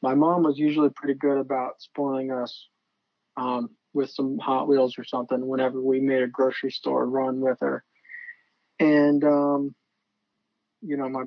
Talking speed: 160 wpm